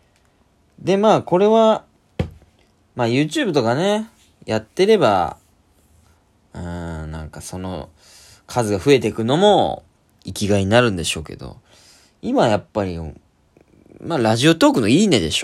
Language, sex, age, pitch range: Japanese, male, 20-39, 90-145 Hz